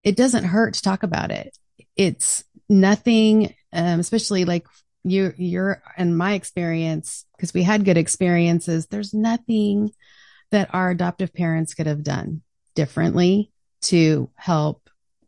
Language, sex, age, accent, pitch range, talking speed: English, female, 30-49, American, 160-195 Hz, 135 wpm